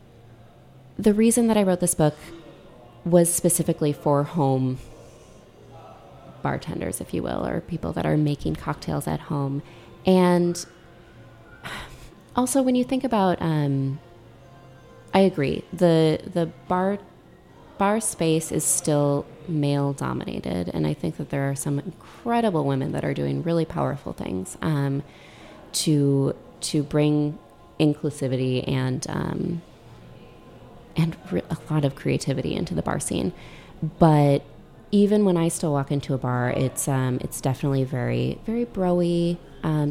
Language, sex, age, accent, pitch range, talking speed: English, female, 20-39, American, 135-175 Hz, 135 wpm